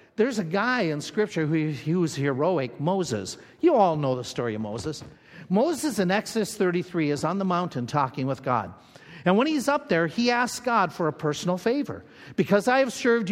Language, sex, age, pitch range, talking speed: English, male, 50-69, 140-195 Hz, 200 wpm